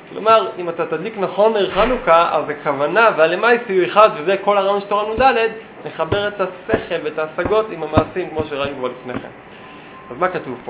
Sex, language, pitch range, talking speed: male, Hebrew, 125-185 Hz, 180 wpm